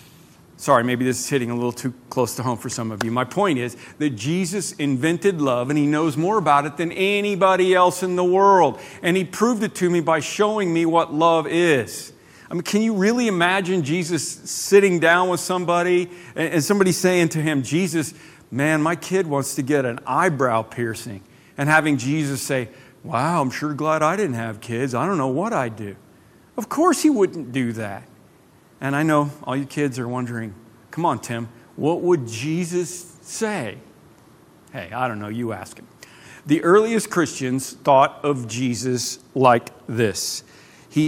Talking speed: 185 wpm